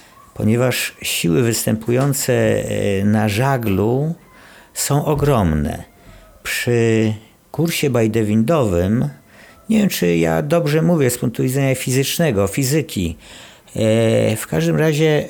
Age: 50-69